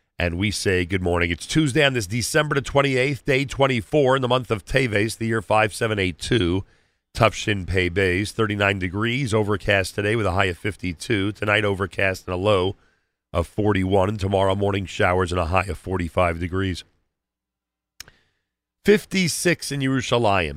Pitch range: 85-110 Hz